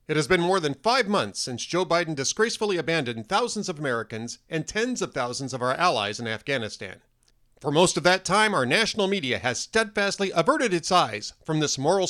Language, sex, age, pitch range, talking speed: English, male, 40-59, 135-190 Hz, 200 wpm